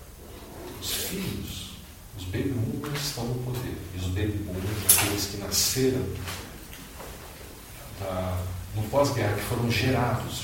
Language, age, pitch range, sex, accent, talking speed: Portuguese, 40-59, 95-115 Hz, male, Brazilian, 120 wpm